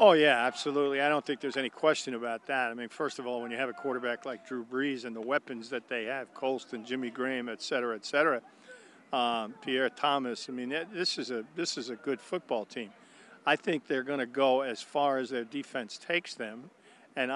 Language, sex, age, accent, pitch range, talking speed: English, male, 50-69, American, 120-140 Hz, 225 wpm